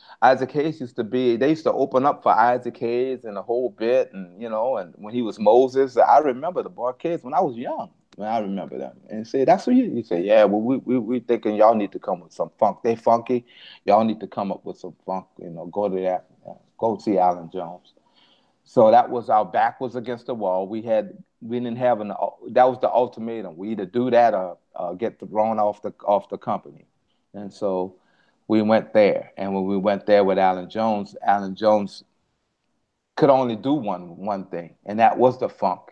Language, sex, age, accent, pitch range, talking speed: English, male, 30-49, American, 105-130 Hz, 230 wpm